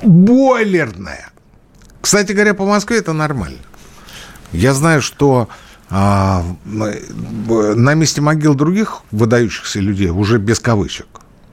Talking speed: 110 wpm